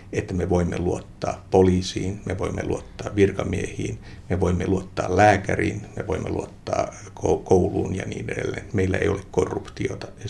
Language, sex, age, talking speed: Finnish, male, 60-79, 145 wpm